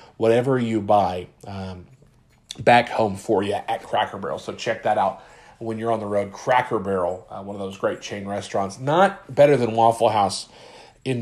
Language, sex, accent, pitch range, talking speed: English, male, American, 100-125 Hz, 185 wpm